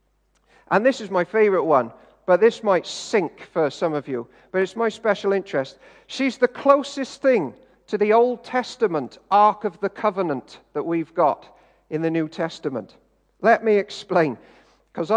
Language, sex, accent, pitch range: English, male, British, 175-240 Hz